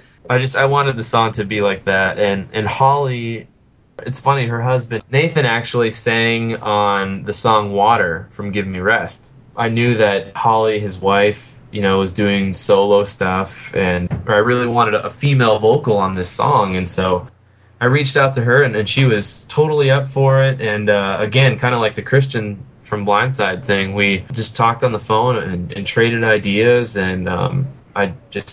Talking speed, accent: 190 wpm, American